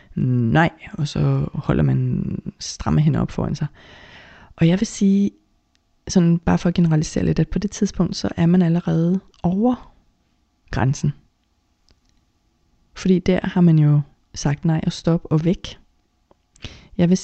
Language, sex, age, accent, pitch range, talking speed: Danish, female, 30-49, native, 125-170 Hz, 145 wpm